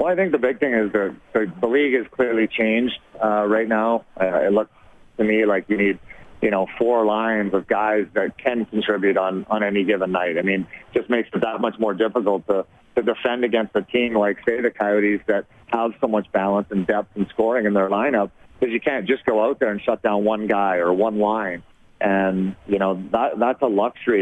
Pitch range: 100-115 Hz